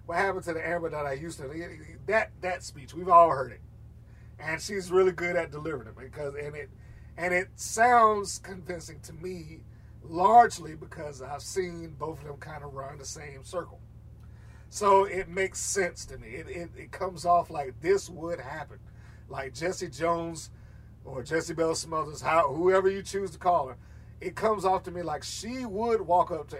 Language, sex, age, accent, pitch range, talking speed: English, male, 40-59, American, 125-185 Hz, 190 wpm